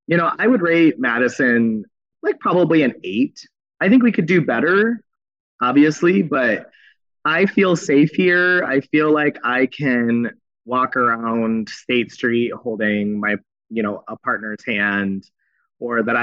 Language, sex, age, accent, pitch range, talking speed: English, male, 30-49, American, 105-145 Hz, 150 wpm